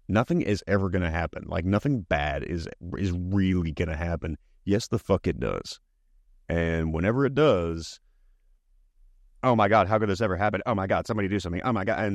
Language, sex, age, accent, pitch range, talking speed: English, male, 30-49, American, 85-105 Hz, 205 wpm